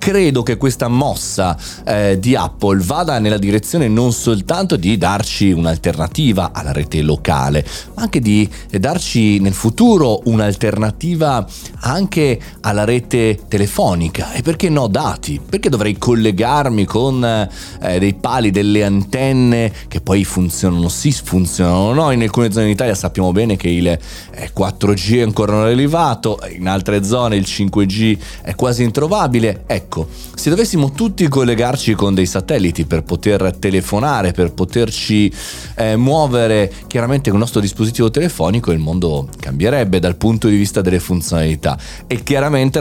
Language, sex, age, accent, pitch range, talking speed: Italian, male, 30-49, native, 95-120 Hz, 145 wpm